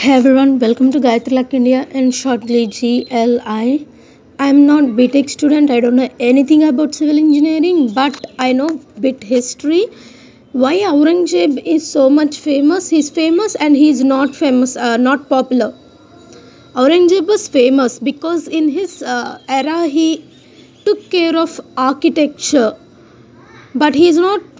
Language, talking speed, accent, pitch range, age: English, 150 wpm, Indian, 255-320 Hz, 20-39